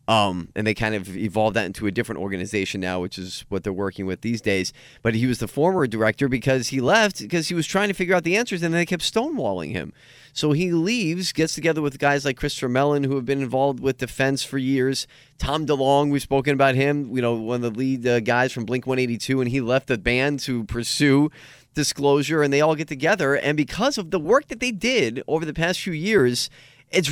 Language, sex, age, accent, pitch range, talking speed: English, male, 30-49, American, 125-165 Hz, 235 wpm